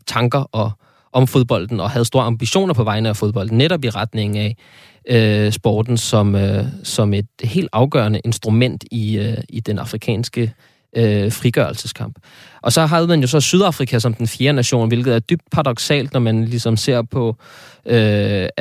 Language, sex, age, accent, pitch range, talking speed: Danish, male, 20-39, native, 110-125 Hz, 170 wpm